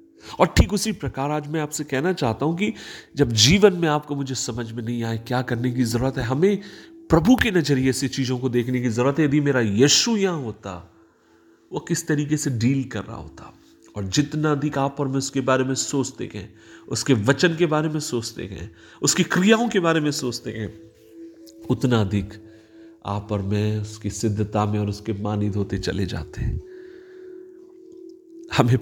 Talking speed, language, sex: 185 wpm, Hindi, male